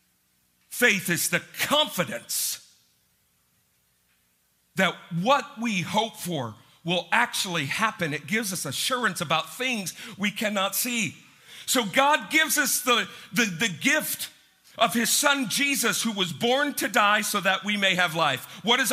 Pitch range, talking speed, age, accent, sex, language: 120-205 Hz, 145 wpm, 50-69, American, male, English